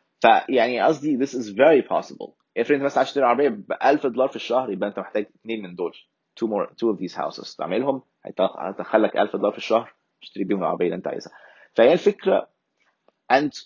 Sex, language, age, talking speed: male, Arabic, 20-39, 195 wpm